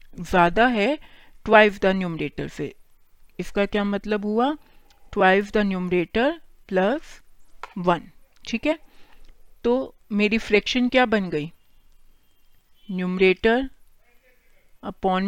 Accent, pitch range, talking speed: native, 185-230 Hz, 75 wpm